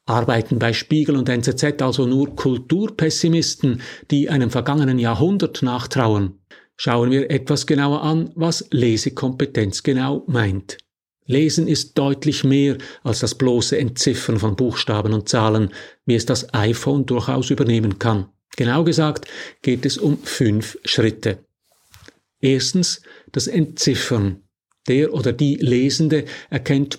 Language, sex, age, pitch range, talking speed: German, male, 50-69, 115-150 Hz, 125 wpm